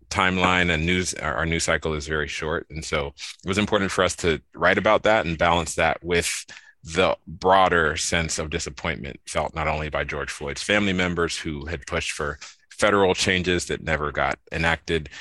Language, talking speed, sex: English, 185 wpm, male